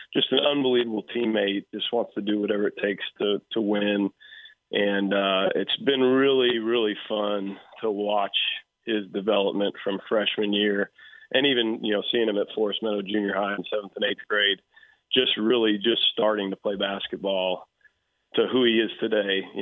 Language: English